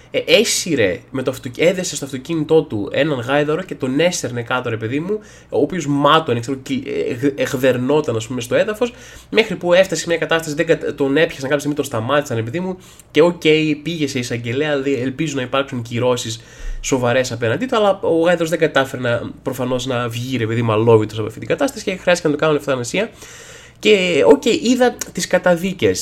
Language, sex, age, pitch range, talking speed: Greek, male, 20-39, 135-185 Hz, 195 wpm